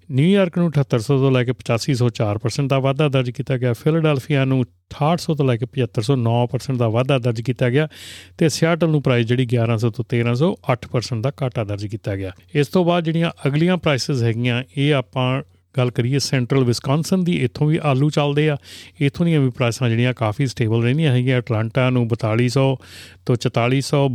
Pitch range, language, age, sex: 120-145 Hz, Punjabi, 40-59, male